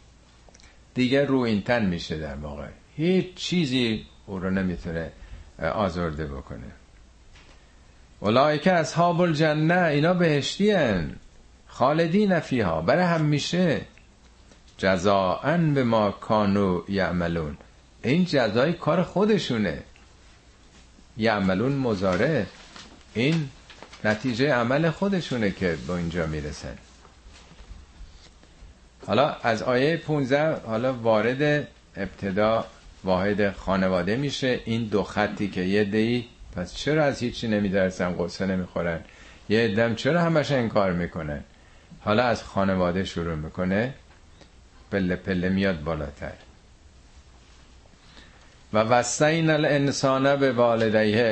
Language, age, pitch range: Persian, 50-69, 80-135 Hz